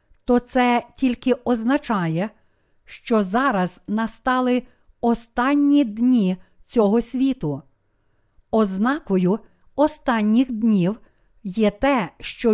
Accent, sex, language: native, female, Ukrainian